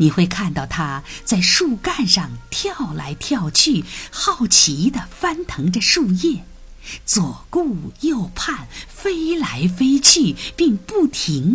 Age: 50-69